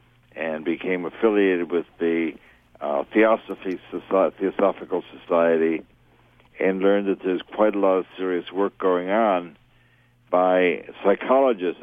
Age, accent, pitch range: 60-79, American, 85-105 Hz